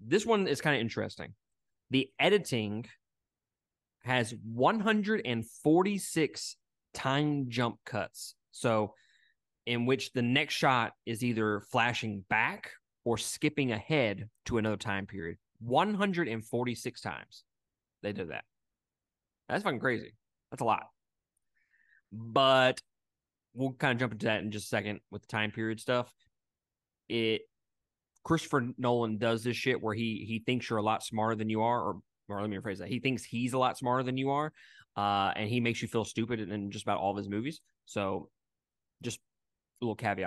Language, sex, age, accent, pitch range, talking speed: English, male, 20-39, American, 110-135 Hz, 160 wpm